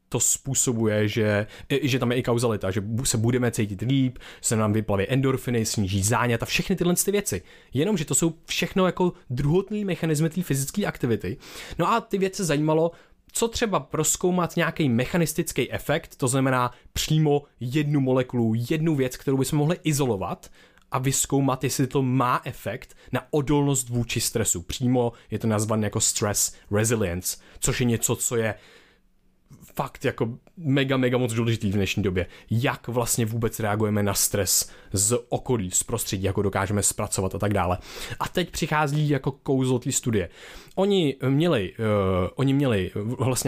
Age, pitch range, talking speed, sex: 20-39, 105-140 Hz, 155 wpm, male